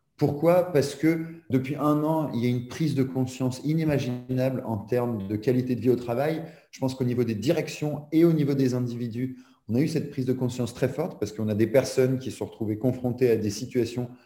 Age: 30-49